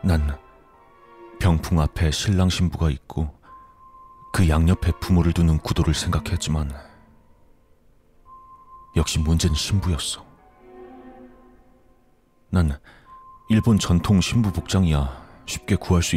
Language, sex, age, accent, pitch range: Korean, male, 40-59, native, 80-125 Hz